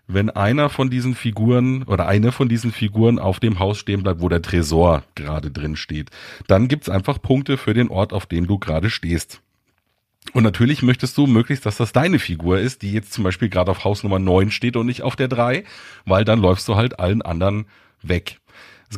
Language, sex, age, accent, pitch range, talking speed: German, male, 40-59, German, 95-125 Hz, 215 wpm